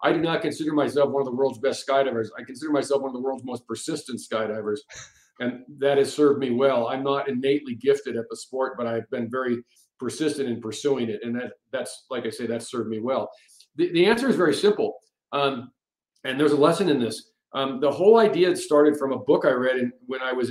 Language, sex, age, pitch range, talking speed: English, male, 50-69, 120-145 Hz, 230 wpm